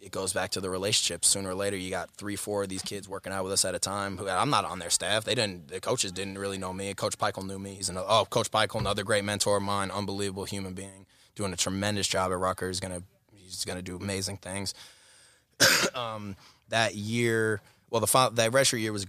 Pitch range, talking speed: 95-110 Hz, 255 wpm